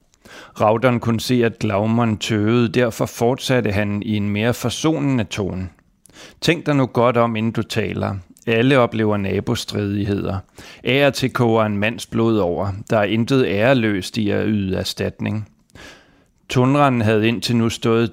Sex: male